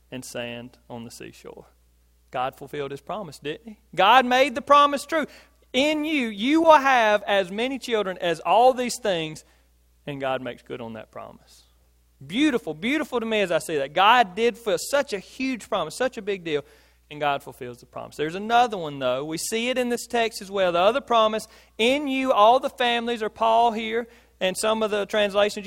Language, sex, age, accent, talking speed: English, male, 40-59, American, 205 wpm